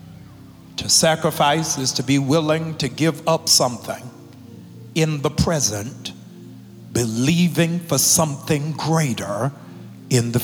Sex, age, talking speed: male, 60-79, 110 wpm